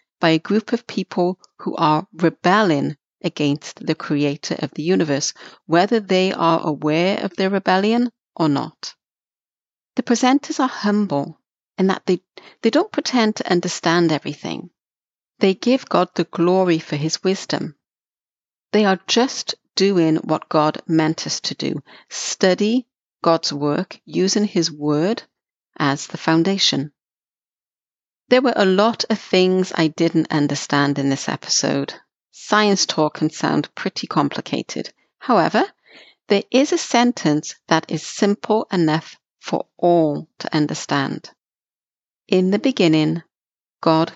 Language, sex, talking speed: English, female, 130 wpm